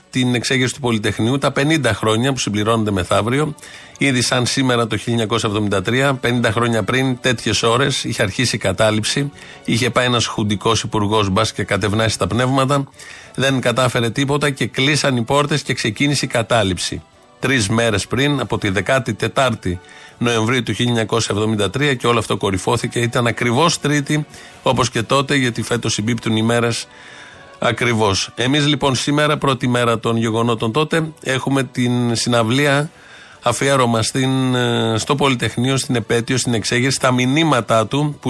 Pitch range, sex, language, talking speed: 110-135 Hz, male, Greek, 145 wpm